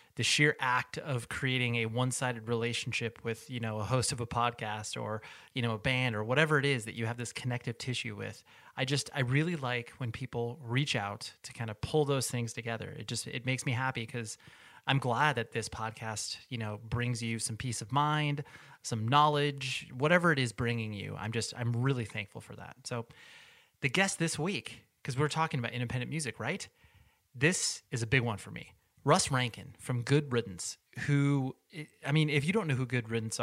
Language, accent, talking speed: English, American, 210 wpm